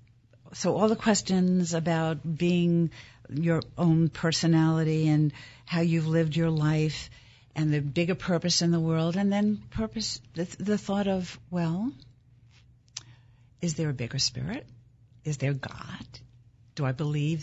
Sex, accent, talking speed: female, American, 140 wpm